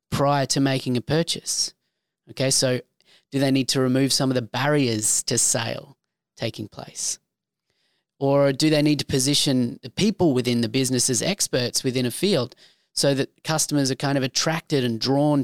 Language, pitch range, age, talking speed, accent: English, 125-155 Hz, 30-49, 175 wpm, Australian